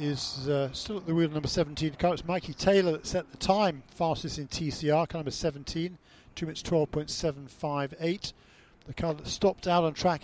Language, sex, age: English, male, 50-69